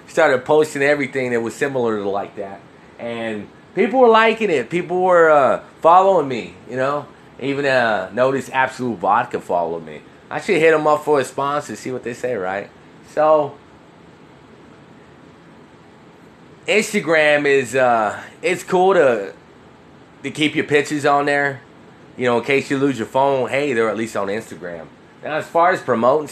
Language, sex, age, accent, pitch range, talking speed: English, male, 20-39, American, 110-150 Hz, 165 wpm